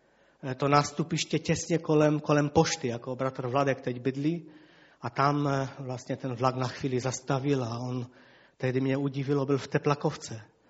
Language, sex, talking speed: Czech, male, 150 wpm